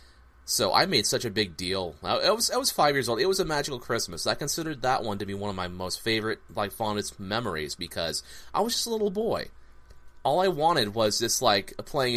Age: 30-49